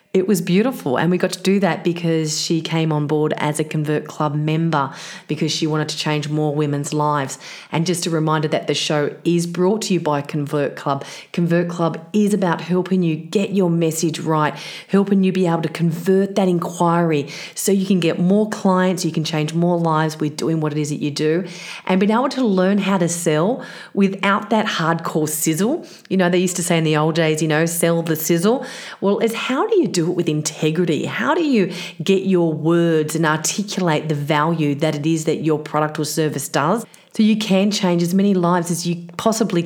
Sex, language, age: female, English, 40-59